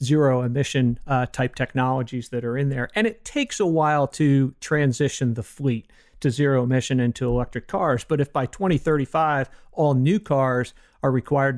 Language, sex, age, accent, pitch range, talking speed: English, male, 50-69, American, 125-160 Hz, 170 wpm